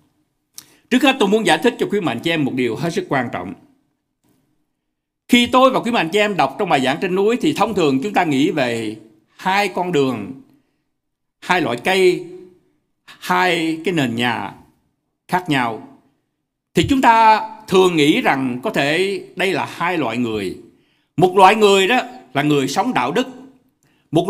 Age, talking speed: 60-79, 180 wpm